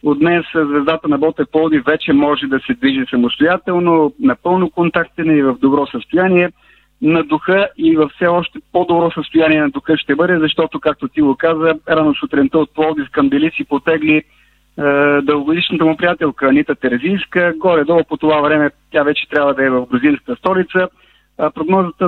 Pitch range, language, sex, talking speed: 145-175 Hz, Bulgarian, male, 165 wpm